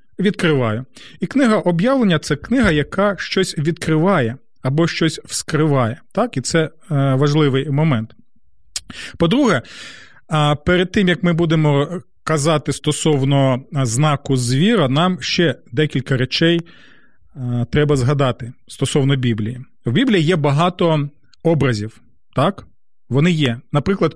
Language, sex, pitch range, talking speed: Ukrainian, male, 135-180 Hz, 105 wpm